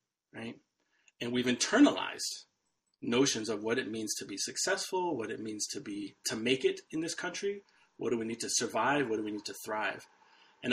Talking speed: 200 wpm